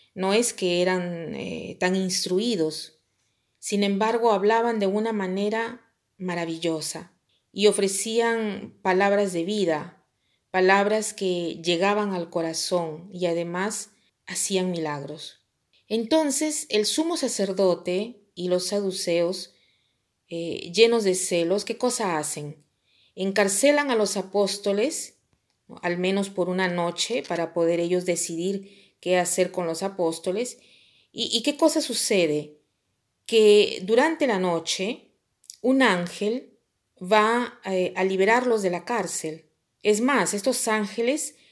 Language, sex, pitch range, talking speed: Spanish, female, 175-225 Hz, 115 wpm